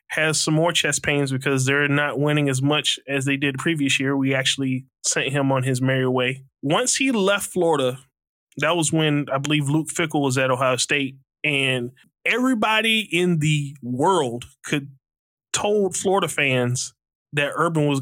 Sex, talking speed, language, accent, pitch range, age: male, 175 wpm, English, American, 135-155 Hz, 20-39